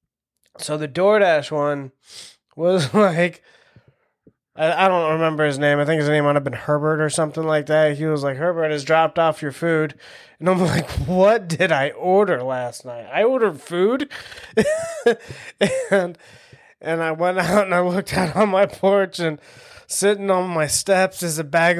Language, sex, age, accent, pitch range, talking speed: English, male, 20-39, American, 150-190 Hz, 175 wpm